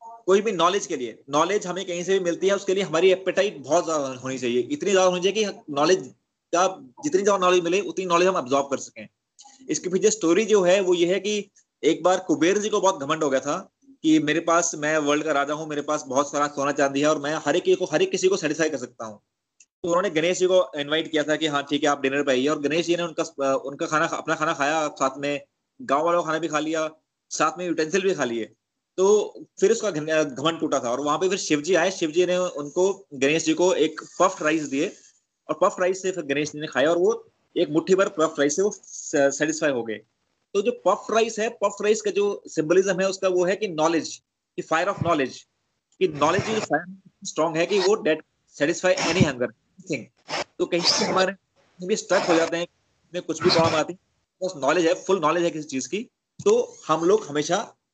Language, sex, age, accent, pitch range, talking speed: Hindi, male, 20-39, native, 150-195 Hz, 200 wpm